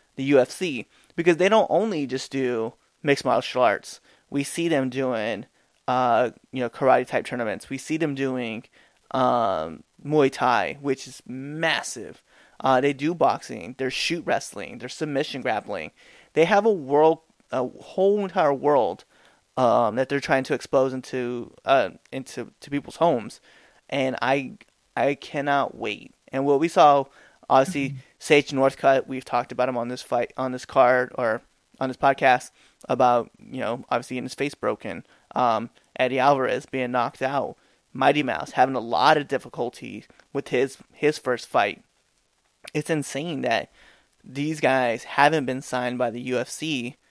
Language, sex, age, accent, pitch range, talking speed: English, male, 30-49, American, 125-150 Hz, 155 wpm